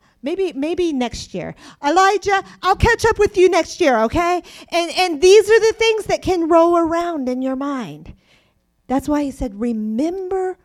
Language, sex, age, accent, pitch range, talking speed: English, female, 40-59, American, 235-310 Hz, 175 wpm